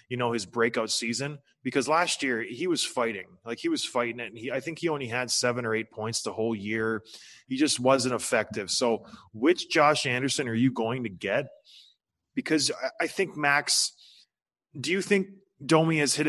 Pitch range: 120-155 Hz